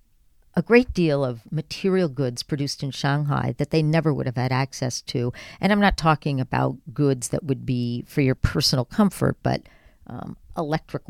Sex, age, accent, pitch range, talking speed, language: female, 50-69, American, 130-170 Hz, 180 wpm, English